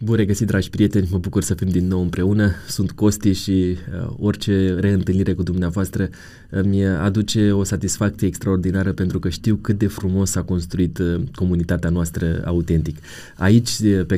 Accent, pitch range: native, 90-105 Hz